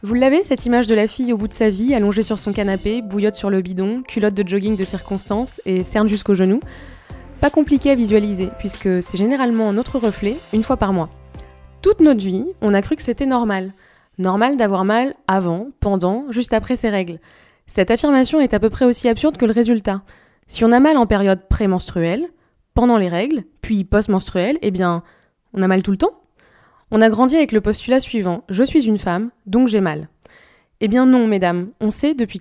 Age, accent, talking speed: 20-39, French, 205 wpm